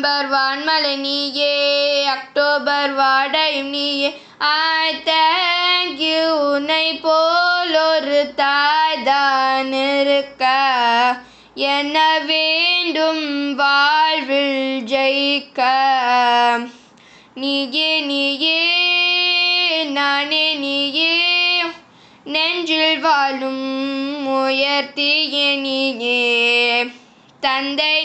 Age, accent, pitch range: 20-39, native, 265-315 Hz